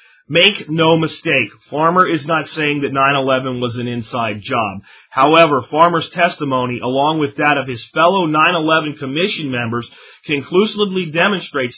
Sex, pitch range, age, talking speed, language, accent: male, 135-170 Hz, 40-59, 140 wpm, English, American